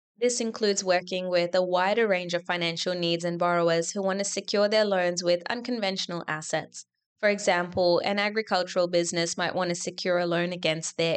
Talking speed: 185 wpm